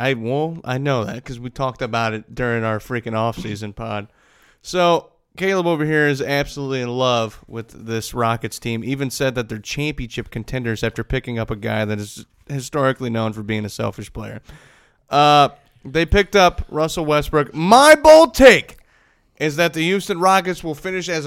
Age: 30-49